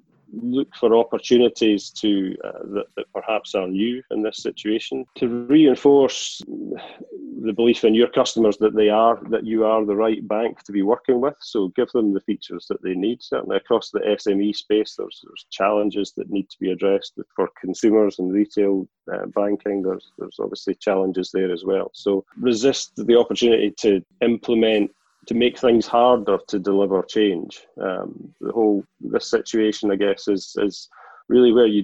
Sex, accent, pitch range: male, British, 100-115 Hz